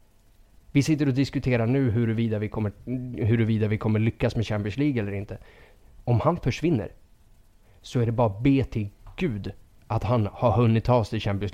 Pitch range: 105-130 Hz